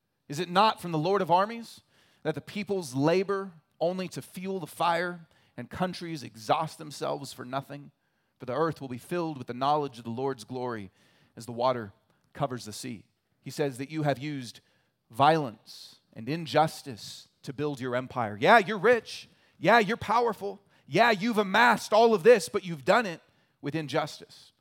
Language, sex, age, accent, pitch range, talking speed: English, male, 30-49, American, 130-175 Hz, 180 wpm